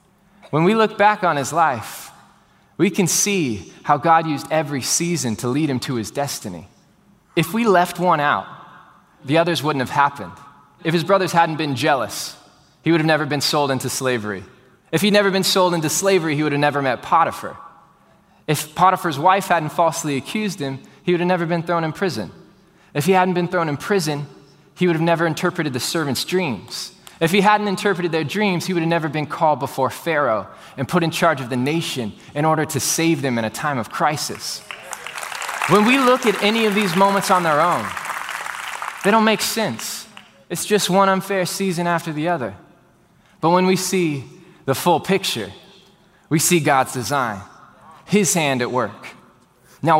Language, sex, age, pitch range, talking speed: English, male, 20-39, 145-185 Hz, 190 wpm